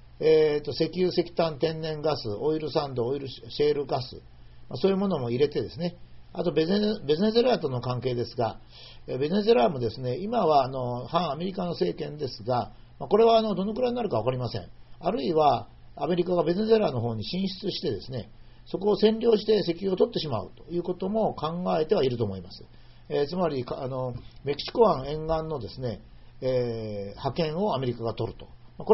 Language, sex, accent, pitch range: Japanese, male, native, 115-185 Hz